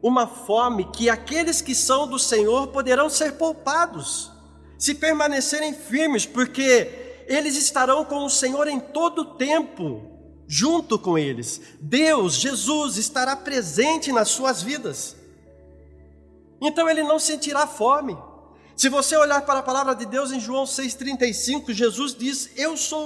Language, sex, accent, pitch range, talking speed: Portuguese, male, Brazilian, 225-300 Hz, 140 wpm